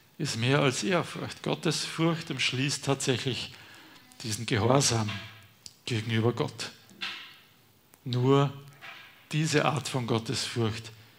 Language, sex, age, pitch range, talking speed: German, male, 50-69, 120-150 Hz, 85 wpm